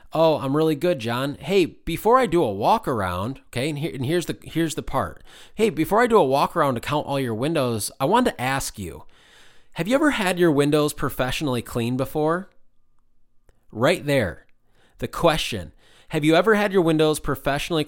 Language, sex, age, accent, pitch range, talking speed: English, male, 20-39, American, 115-160 Hz, 195 wpm